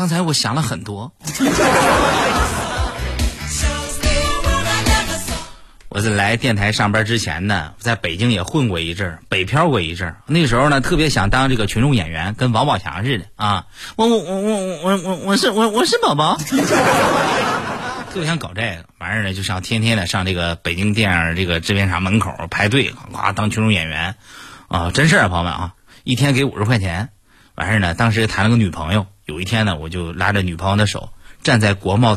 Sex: male